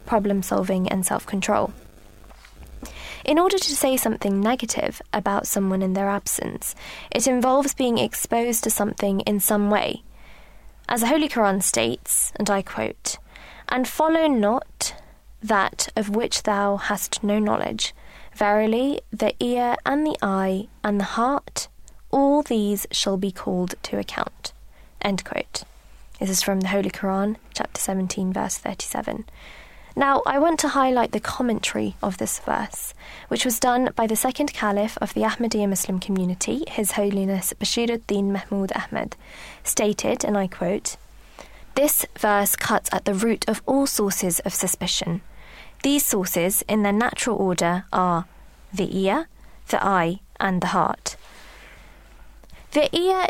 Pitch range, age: 195-250 Hz, 20-39